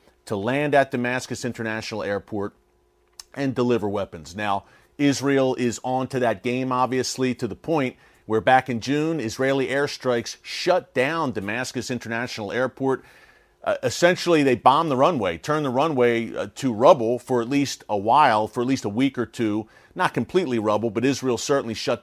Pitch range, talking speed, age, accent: 115-140 Hz, 165 wpm, 40-59, American